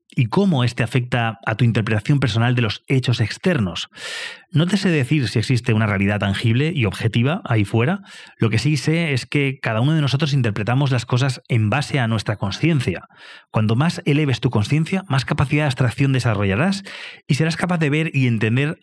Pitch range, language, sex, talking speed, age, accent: 115-150 Hz, English, male, 190 wpm, 30-49, Spanish